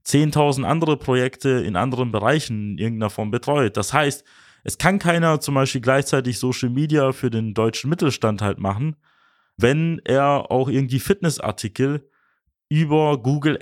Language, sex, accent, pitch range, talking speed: German, male, German, 120-160 Hz, 145 wpm